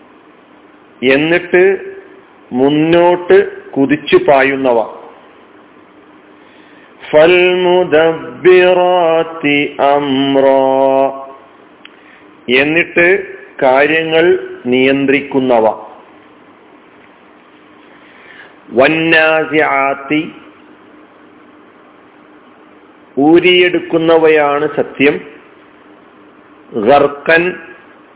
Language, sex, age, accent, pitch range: Malayalam, male, 50-69, native, 140-175 Hz